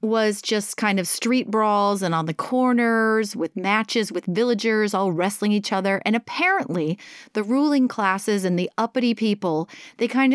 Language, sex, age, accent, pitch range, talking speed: English, female, 30-49, American, 185-250 Hz, 170 wpm